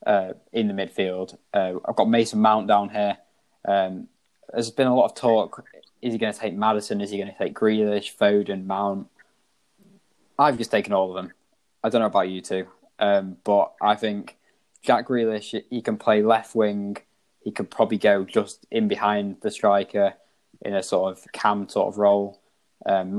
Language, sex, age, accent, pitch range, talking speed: English, male, 20-39, British, 95-110 Hz, 190 wpm